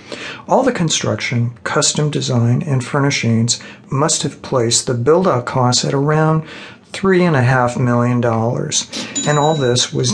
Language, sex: English, male